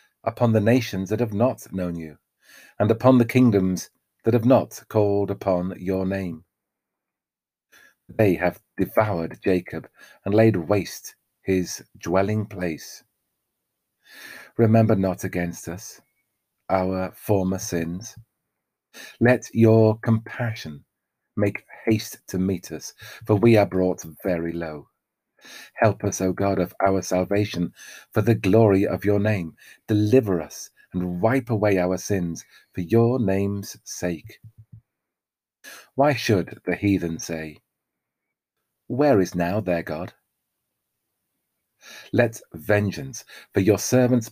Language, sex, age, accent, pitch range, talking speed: English, male, 40-59, British, 90-115 Hz, 120 wpm